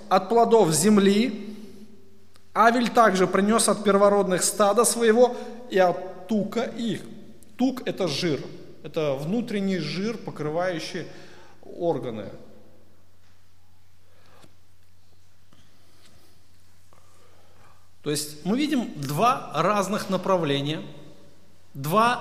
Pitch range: 145-230 Hz